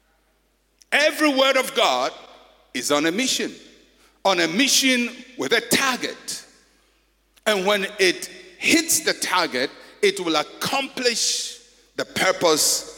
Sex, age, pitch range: male, 60-79, 180-285 Hz